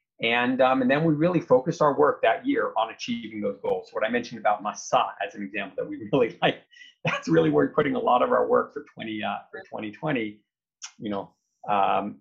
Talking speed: 215 wpm